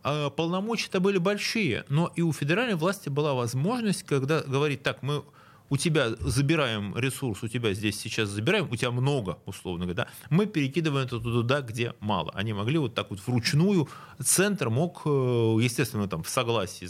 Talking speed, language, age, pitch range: 165 wpm, Russian, 30-49, 120-155 Hz